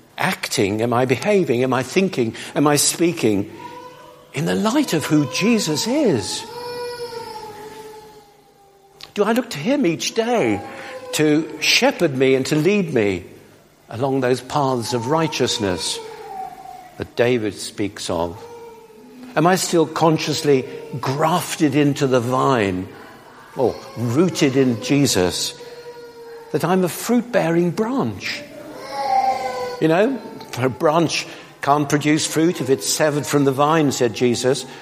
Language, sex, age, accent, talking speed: English, male, 60-79, British, 125 wpm